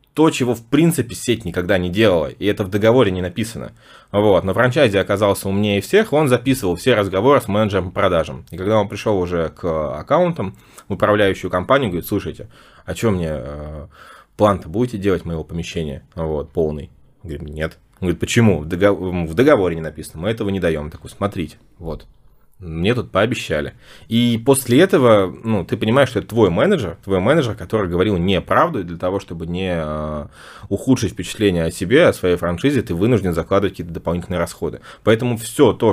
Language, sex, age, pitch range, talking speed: Russian, male, 20-39, 85-115 Hz, 175 wpm